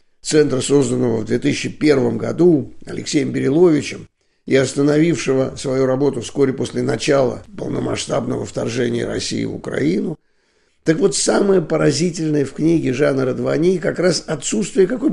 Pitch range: 125-160 Hz